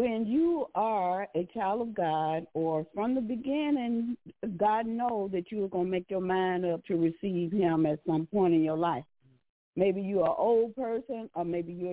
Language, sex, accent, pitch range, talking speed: English, female, American, 160-210 Hz, 190 wpm